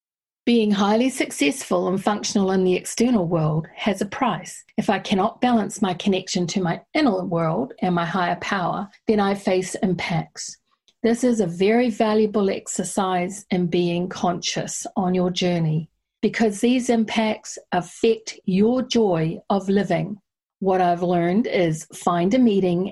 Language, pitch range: English, 175-220 Hz